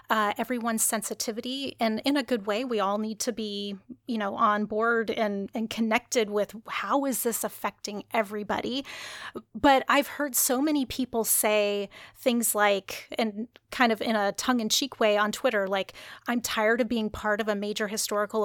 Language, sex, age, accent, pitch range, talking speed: English, female, 30-49, American, 215-255 Hz, 175 wpm